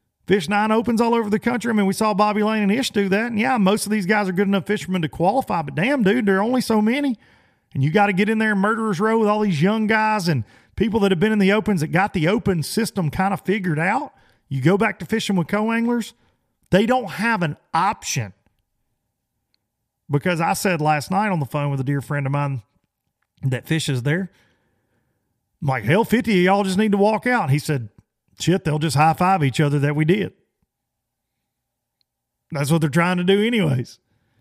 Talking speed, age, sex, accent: 225 wpm, 40-59, male, American